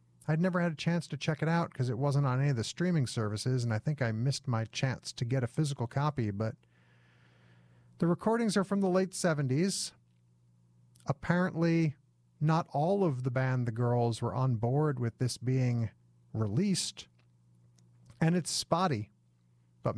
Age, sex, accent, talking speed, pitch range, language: 50-69, male, American, 170 wpm, 100-150 Hz, English